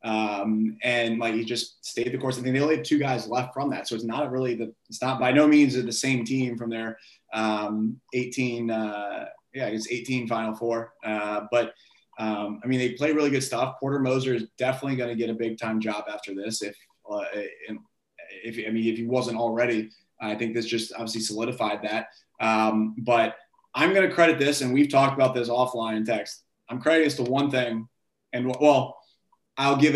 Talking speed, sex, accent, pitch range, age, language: 210 wpm, male, American, 115-145 Hz, 20-39, English